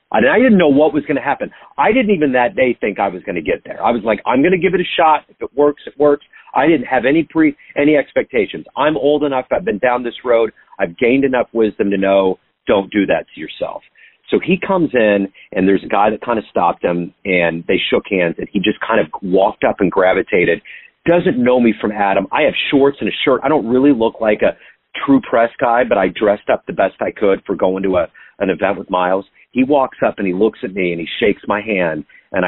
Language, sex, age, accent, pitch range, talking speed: English, male, 40-59, American, 95-145 Hz, 255 wpm